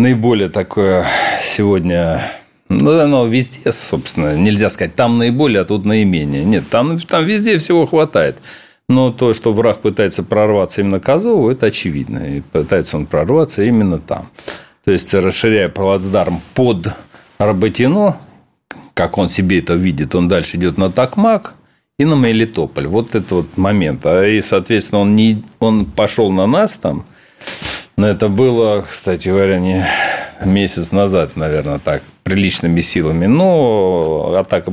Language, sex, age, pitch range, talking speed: Russian, male, 40-59, 95-130 Hz, 140 wpm